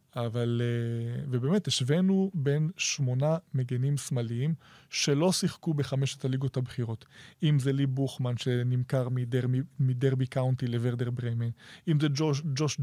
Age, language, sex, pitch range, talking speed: 20-39, Hebrew, male, 130-150 Hz, 120 wpm